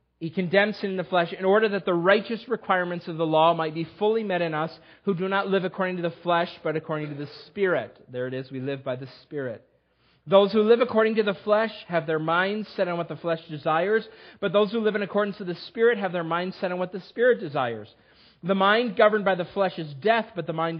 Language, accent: English, American